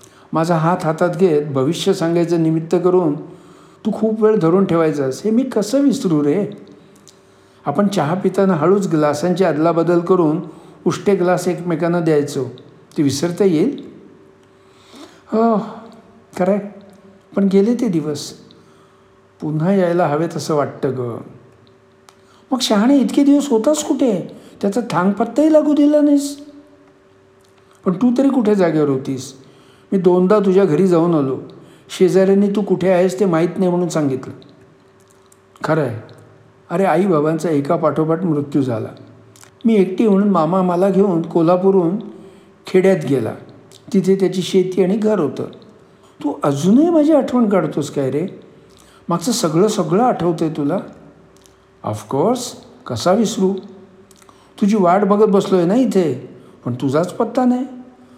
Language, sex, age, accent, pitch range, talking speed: Marathi, male, 60-79, native, 150-205 Hz, 130 wpm